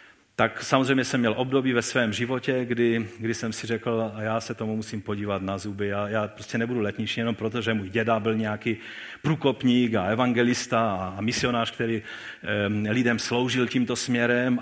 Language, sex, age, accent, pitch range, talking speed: Czech, male, 40-59, native, 110-155 Hz, 185 wpm